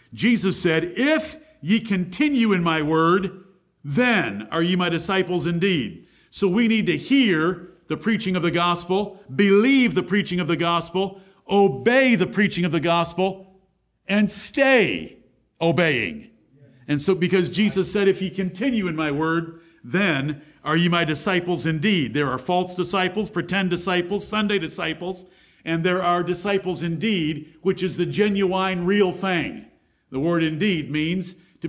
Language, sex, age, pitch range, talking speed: English, male, 50-69, 170-210 Hz, 150 wpm